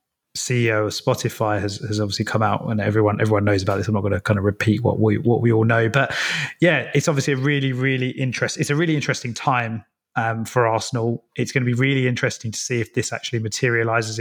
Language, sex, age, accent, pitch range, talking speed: English, male, 20-39, British, 115-135 Hz, 230 wpm